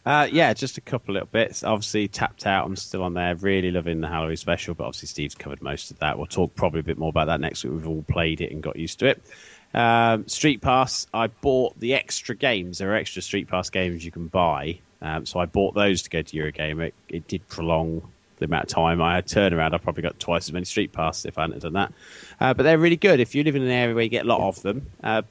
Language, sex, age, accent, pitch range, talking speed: English, male, 30-49, British, 85-105 Hz, 275 wpm